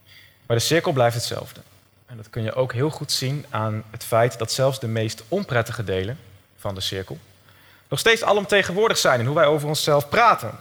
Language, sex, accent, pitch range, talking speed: Dutch, male, Dutch, 115-155 Hz, 200 wpm